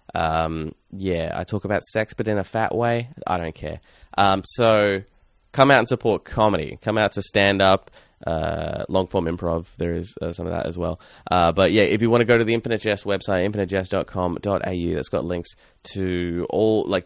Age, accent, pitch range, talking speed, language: 20-39, Australian, 85-115 Hz, 205 wpm, English